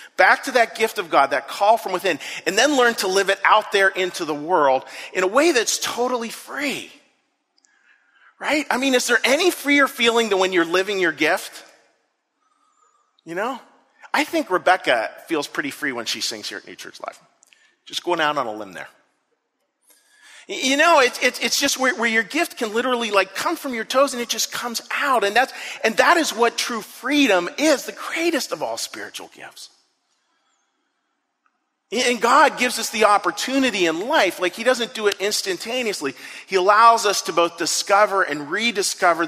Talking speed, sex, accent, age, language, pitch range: 180 wpm, male, American, 40-59, English, 190-265 Hz